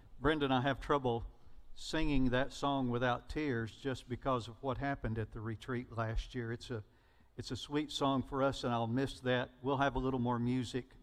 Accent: American